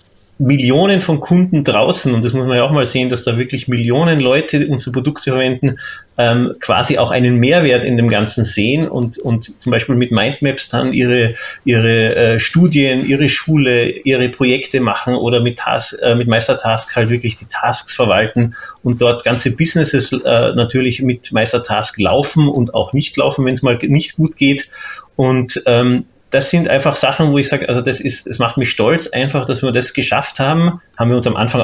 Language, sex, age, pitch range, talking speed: German, male, 30-49, 115-140 Hz, 195 wpm